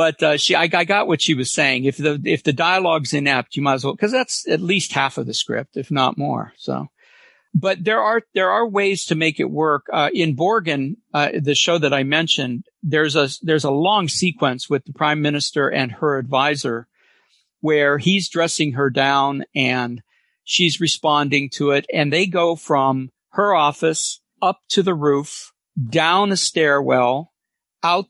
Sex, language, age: male, English, 50-69